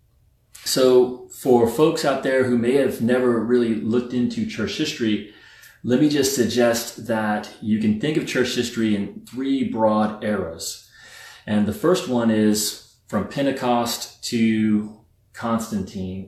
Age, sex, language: 30-49, male, English